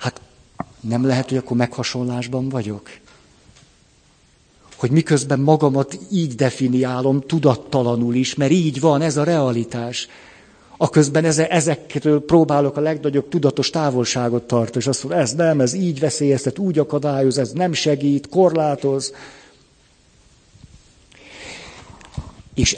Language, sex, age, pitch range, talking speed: Hungarian, male, 50-69, 125-150 Hz, 115 wpm